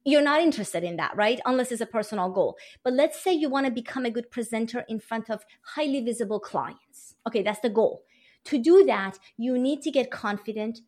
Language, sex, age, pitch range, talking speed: English, female, 30-49, 215-275 Hz, 215 wpm